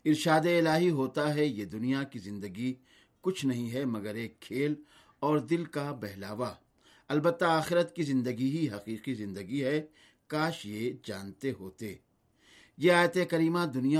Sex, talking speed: male, 145 wpm